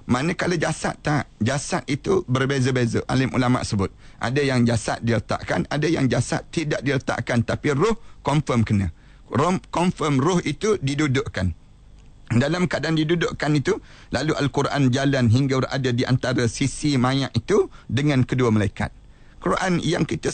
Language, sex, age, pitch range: Malay, male, 40-59, 125-150 Hz